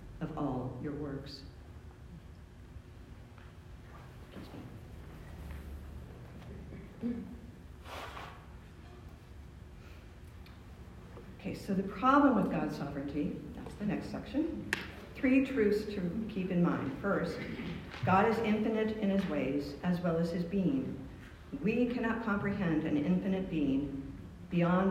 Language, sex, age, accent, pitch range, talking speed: English, female, 50-69, American, 140-185 Hz, 95 wpm